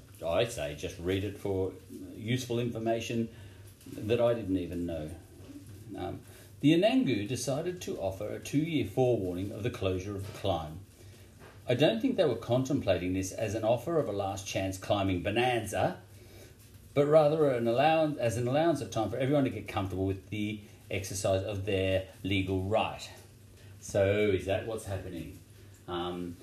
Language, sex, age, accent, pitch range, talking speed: English, male, 40-59, Australian, 95-120 Hz, 160 wpm